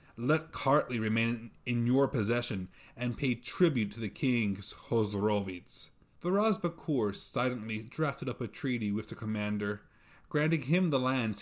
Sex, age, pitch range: male, 30-49, 105-135 Hz